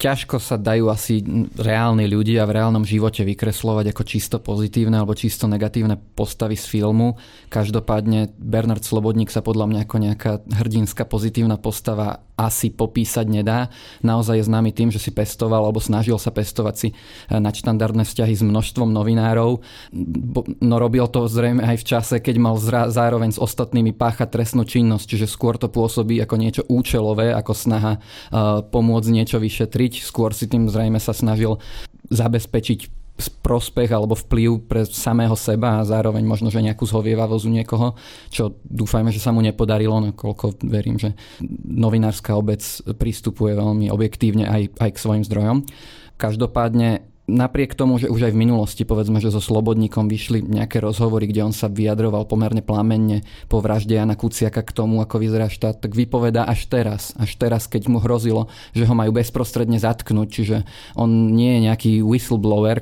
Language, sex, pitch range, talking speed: Slovak, male, 110-115 Hz, 160 wpm